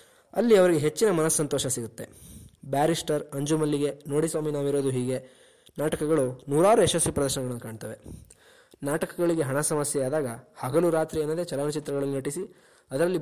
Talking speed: 110 wpm